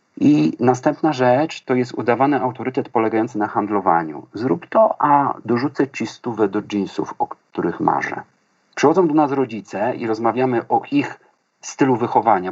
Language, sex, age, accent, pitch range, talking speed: Polish, male, 50-69, native, 110-150 Hz, 150 wpm